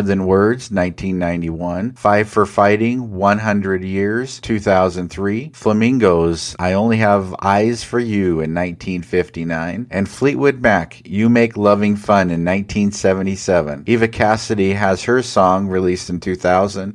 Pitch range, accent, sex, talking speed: 95-110 Hz, American, male, 125 wpm